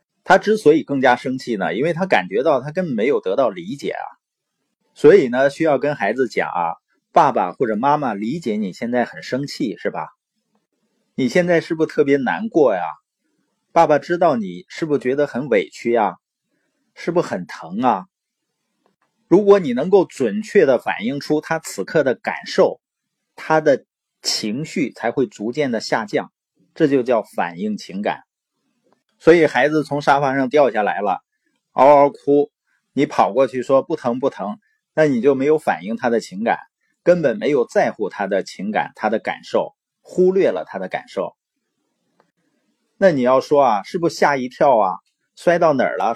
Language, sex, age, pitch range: Chinese, male, 30-49, 135-205 Hz